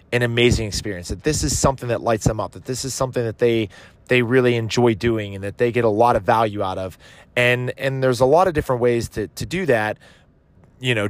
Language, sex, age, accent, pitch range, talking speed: English, male, 30-49, American, 110-135 Hz, 245 wpm